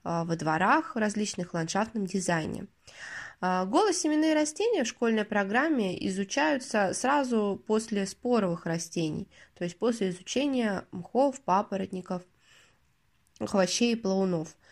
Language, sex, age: Russian, female, 20-39